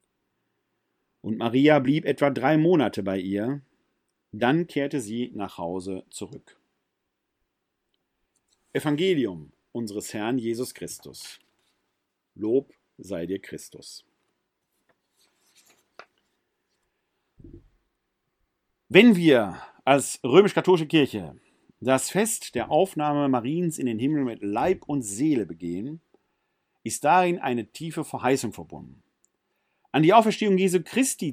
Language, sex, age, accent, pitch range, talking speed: German, male, 50-69, German, 115-160 Hz, 100 wpm